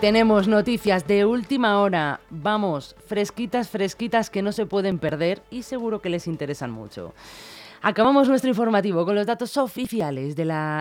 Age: 30-49